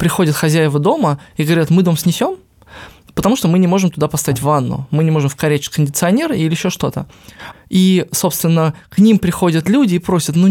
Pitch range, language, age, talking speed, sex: 155-190 Hz, Russian, 20-39, 190 wpm, male